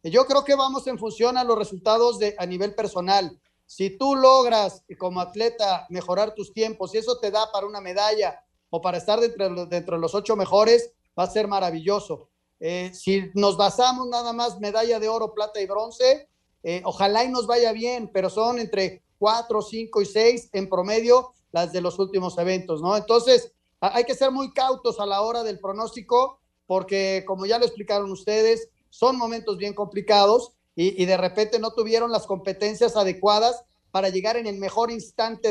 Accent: Mexican